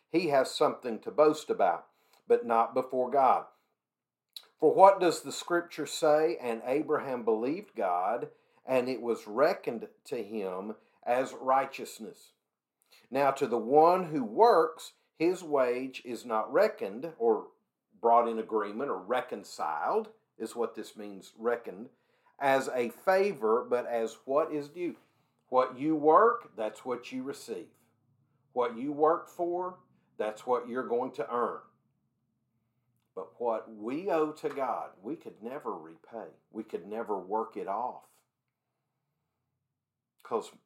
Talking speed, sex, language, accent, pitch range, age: 135 wpm, male, English, American, 115-155 Hz, 50-69